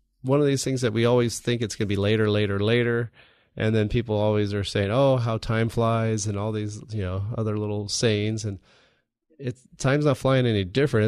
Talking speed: 215 wpm